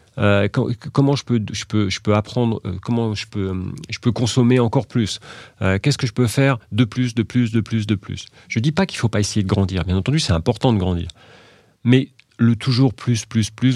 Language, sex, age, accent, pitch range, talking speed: French, male, 40-59, French, 100-120 Hz, 240 wpm